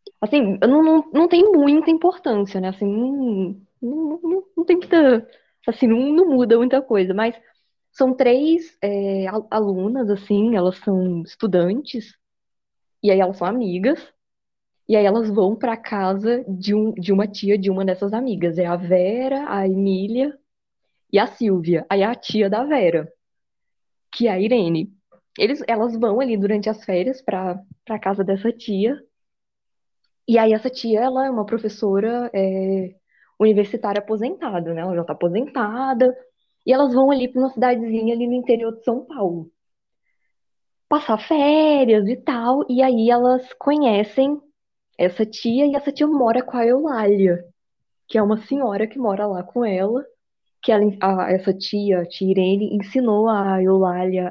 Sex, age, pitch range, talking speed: female, 10-29, 195-255 Hz, 160 wpm